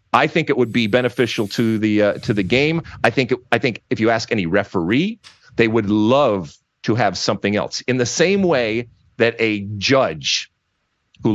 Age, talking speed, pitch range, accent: 40-59, 190 wpm, 105-130 Hz, American